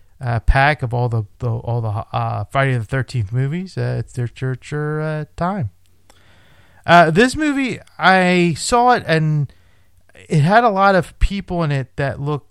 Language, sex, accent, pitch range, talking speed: English, male, American, 120-160 Hz, 175 wpm